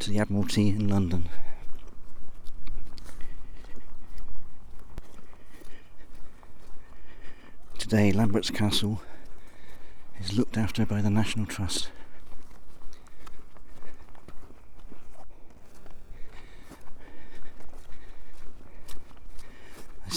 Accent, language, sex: British, English, male